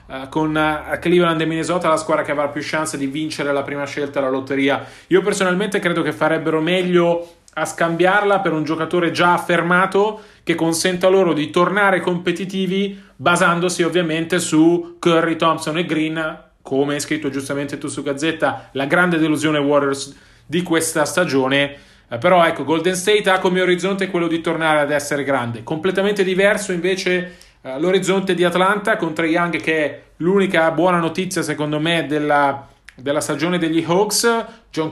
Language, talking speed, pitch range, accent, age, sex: Italian, 155 wpm, 150-185 Hz, native, 30-49, male